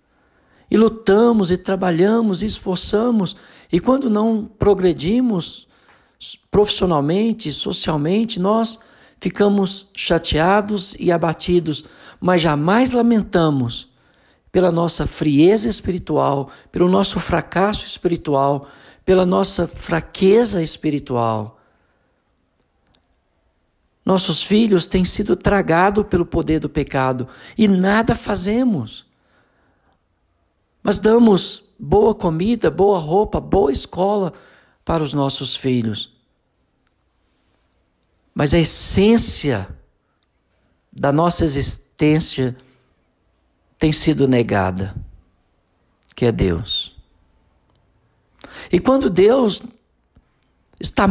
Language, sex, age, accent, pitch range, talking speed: Portuguese, male, 60-79, Brazilian, 130-205 Hz, 85 wpm